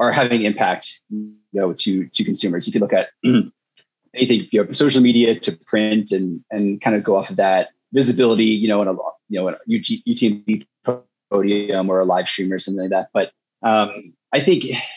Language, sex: English, male